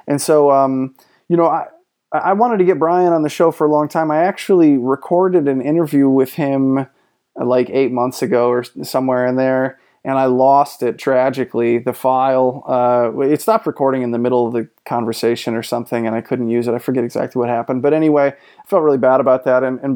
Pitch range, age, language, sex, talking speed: 125-150 Hz, 30-49, English, male, 215 wpm